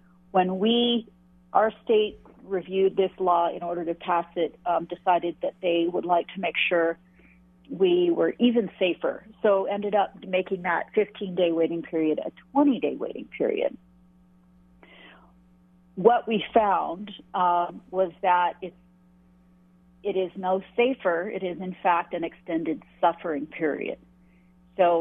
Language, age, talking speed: English, 40-59, 135 wpm